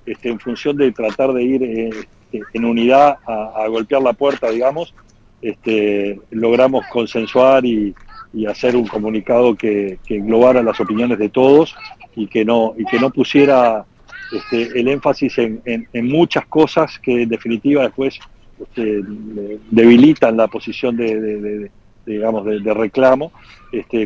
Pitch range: 110-130 Hz